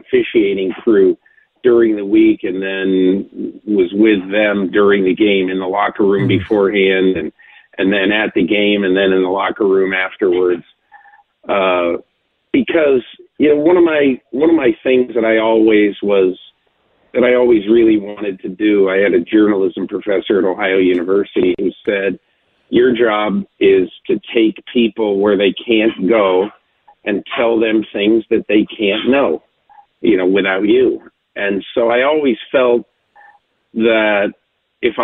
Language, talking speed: English, 160 wpm